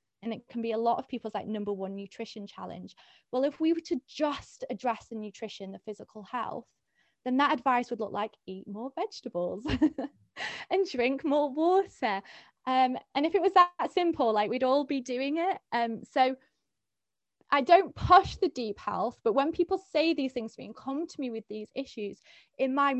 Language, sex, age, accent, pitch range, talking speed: English, female, 20-39, British, 210-275 Hz, 200 wpm